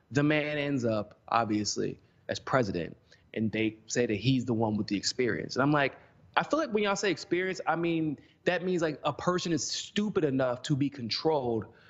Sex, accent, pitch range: male, American, 130-165 Hz